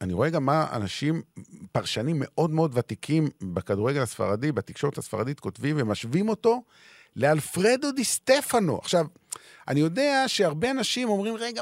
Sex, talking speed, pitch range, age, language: male, 130 wpm, 125-190 Hz, 40-59, Hebrew